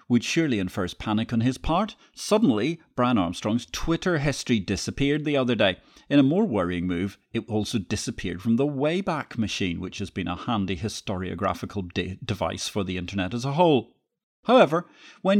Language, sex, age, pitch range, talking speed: English, male, 40-59, 95-140 Hz, 170 wpm